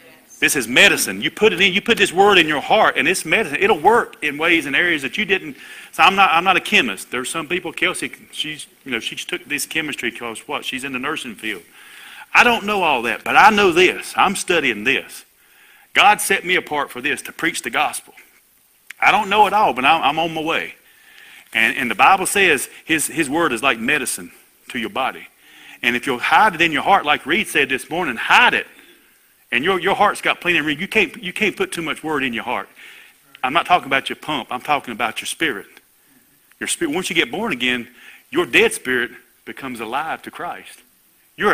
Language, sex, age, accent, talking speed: English, male, 40-59, American, 230 wpm